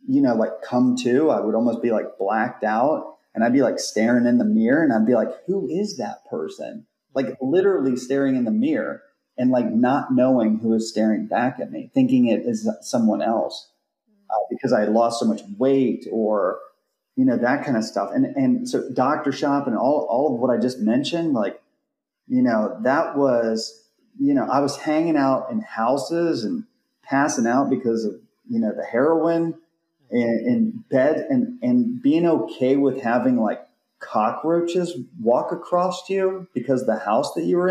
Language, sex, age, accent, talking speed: English, male, 30-49, American, 190 wpm